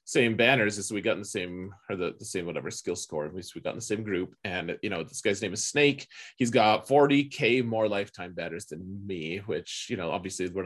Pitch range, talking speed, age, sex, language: 95-130 Hz, 260 wpm, 30-49, male, English